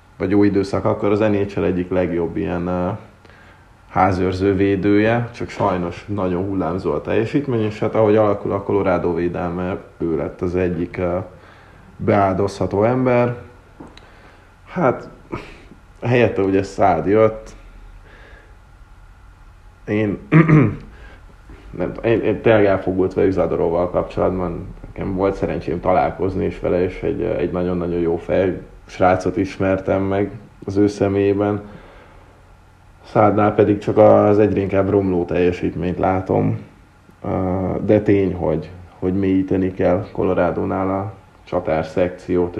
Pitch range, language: 90-100 Hz, Hungarian